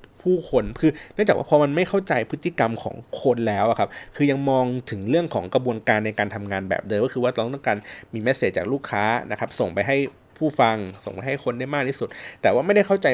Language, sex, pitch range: Thai, male, 105-145 Hz